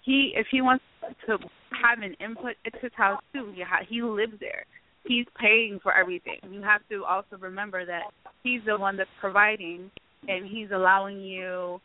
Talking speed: 170 wpm